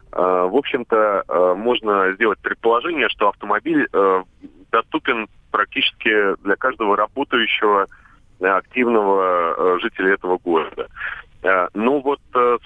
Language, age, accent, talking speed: Russian, 30-49, native, 90 wpm